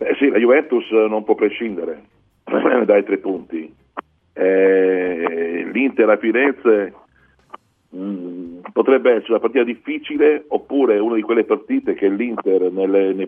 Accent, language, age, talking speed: native, Italian, 50-69, 130 wpm